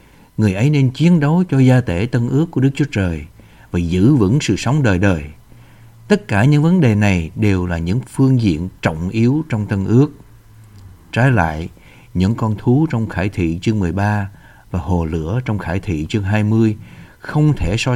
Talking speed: 195 wpm